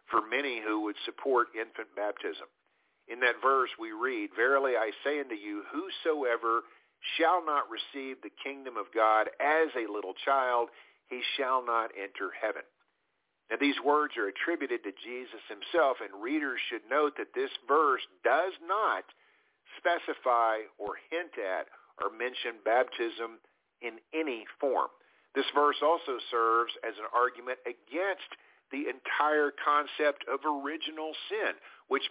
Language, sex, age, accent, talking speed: English, male, 50-69, American, 140 wpm